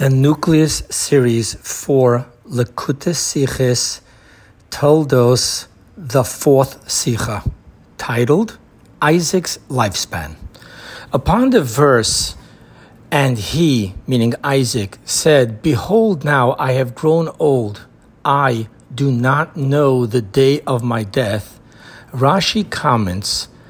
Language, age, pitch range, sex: English, 60-79, 120-160 Hz, male